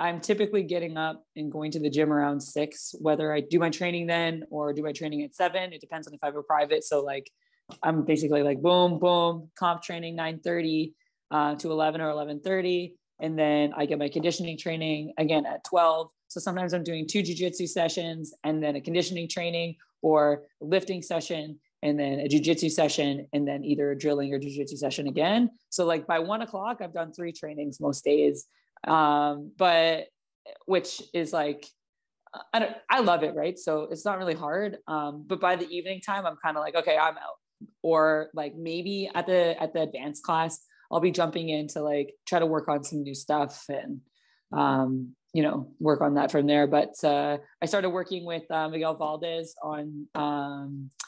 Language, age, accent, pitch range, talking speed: English, 20-39, American, 150-175 Hz, 195 wpm